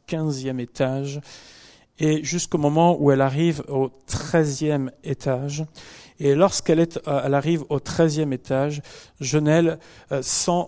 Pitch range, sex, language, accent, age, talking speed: 155-190 Hz, male, French, French, 40-59, 120 wpm